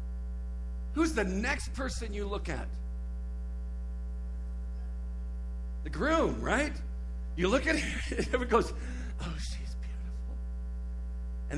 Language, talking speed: English, 110 wpm